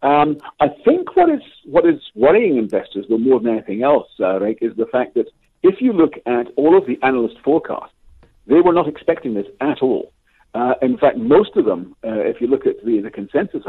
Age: 60-79